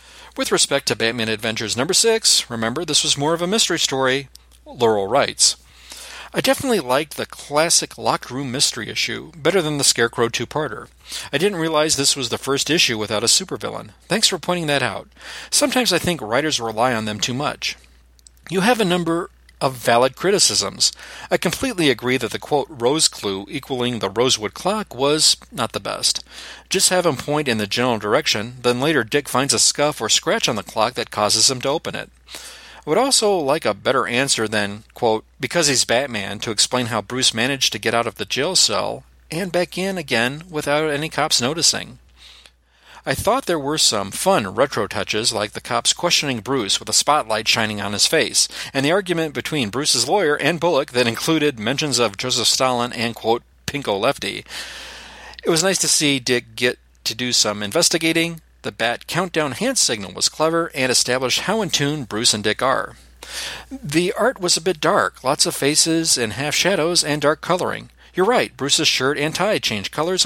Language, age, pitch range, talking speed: English, 40-59, 115-160 Hz, 190 wpm